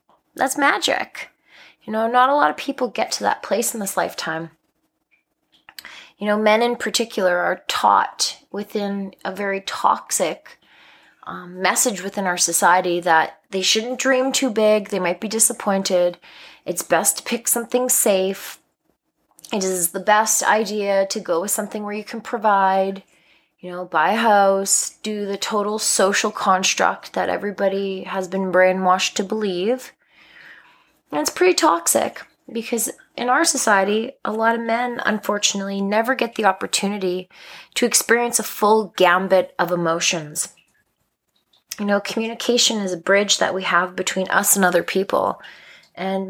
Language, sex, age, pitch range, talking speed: English, female, 20-39, 185-220 Hz, 150 wpm